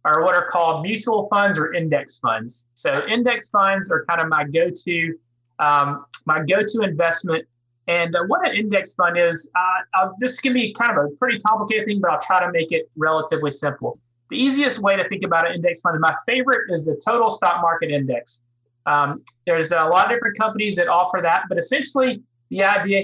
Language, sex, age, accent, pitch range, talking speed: English, male, 30-49, American, 155-205 Hz, 205 wpm